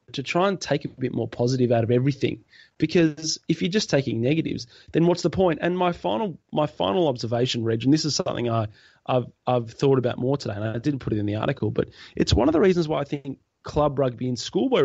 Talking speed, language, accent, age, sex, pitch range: 245 wpm, English, Australian, 20-39, male, 130-160 Hz